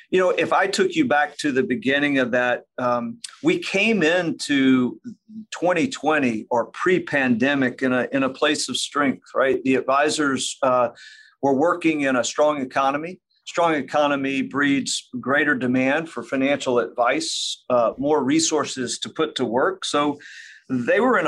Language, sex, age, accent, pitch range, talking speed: English, male, 50-69, American, 130-180 Hz, 155 wpm